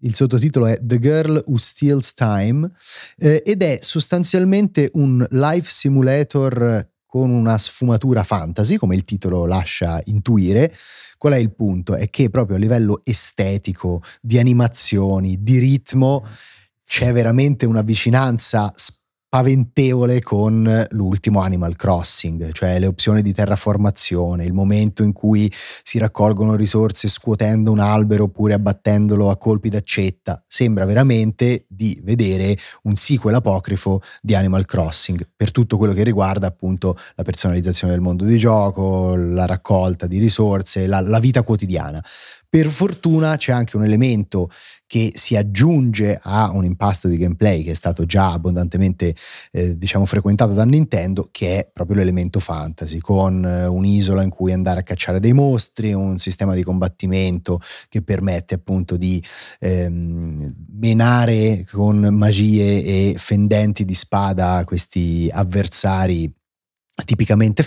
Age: 30-49